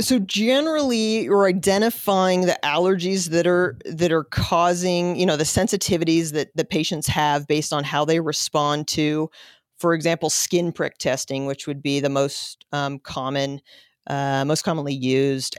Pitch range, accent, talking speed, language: 140-170 Hz, American, 160 wpm, English